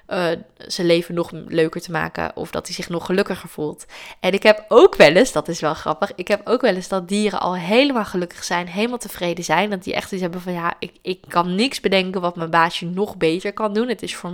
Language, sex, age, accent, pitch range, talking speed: Dutch, female, 20-39, Dutch, 170-205 Hz, 250 wpm